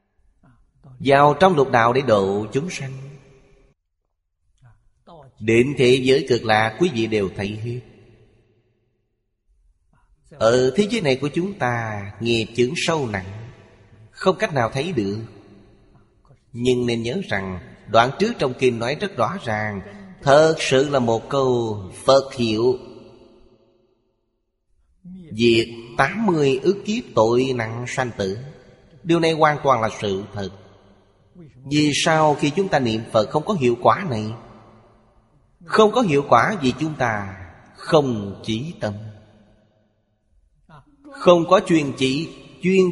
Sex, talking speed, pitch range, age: male, 135 wpm, 110-145 Hz, 30-49